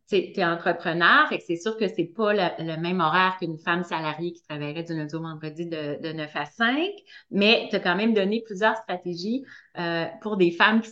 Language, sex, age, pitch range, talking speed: French, female, 30-49, 170-210 Hz, 225 wpm